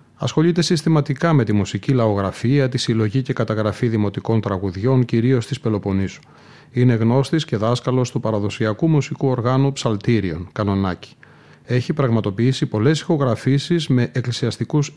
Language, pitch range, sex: Greek, 115-145 Hz, male